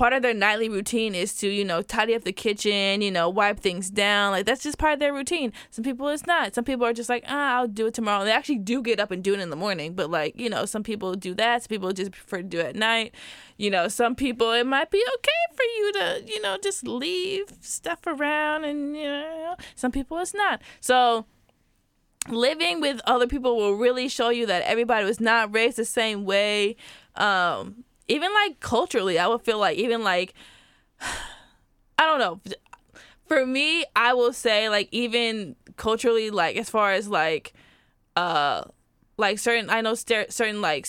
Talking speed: 210 wpm